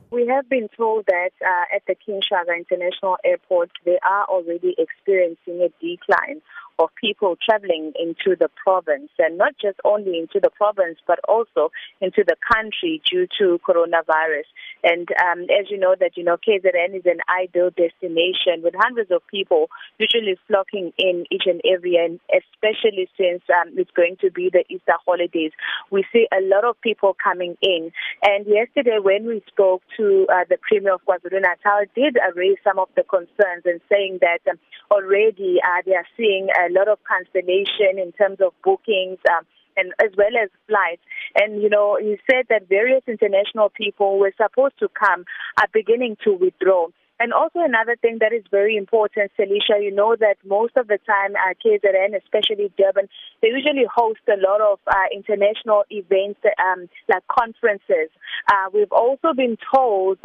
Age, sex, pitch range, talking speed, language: 30-49, female, 185-230 Hz, 175 wpm, English